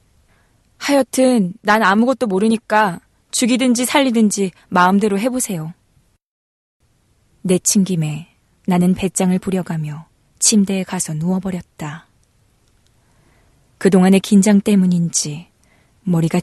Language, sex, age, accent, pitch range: Korean, female, 20-39, native, 160-195 Hz